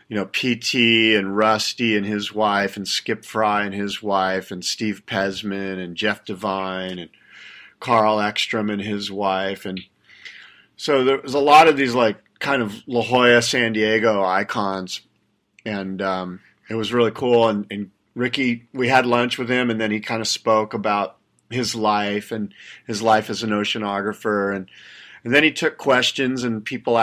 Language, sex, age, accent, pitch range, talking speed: English, male, 40-59, American, 105-120 Hz, 175 wpm